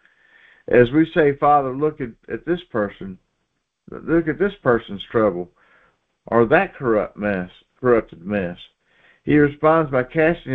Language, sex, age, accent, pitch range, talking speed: English, male, 50-69, American, 115-145 Hz, 135 wpm